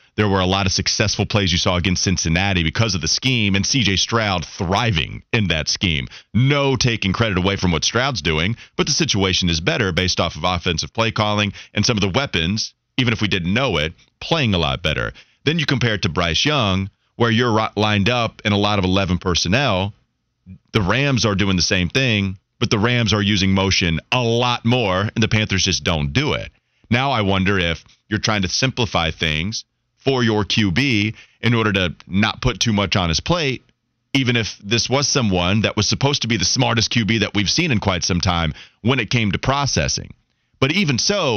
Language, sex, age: English, male, 30-49